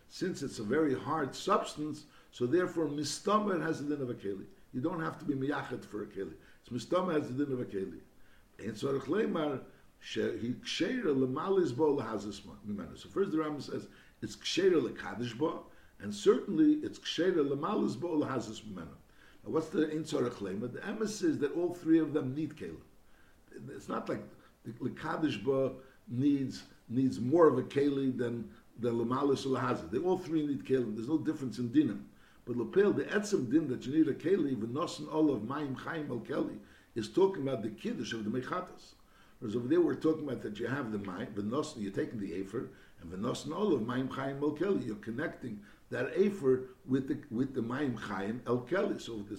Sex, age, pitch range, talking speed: male, 60-79, 130-180 Hz, 180 wpm